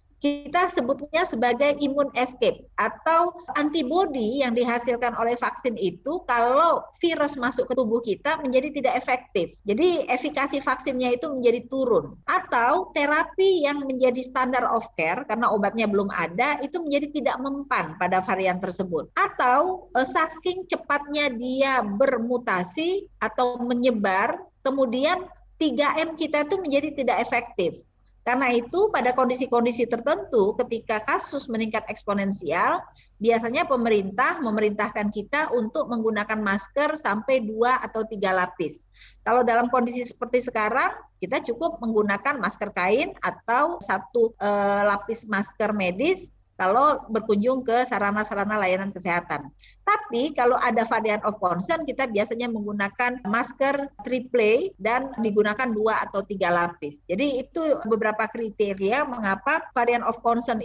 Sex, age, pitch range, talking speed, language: female, 30-49, 220-290 Hz, 125 wpm, Indonesian